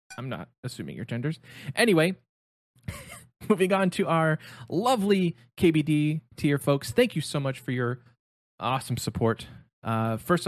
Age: 20-39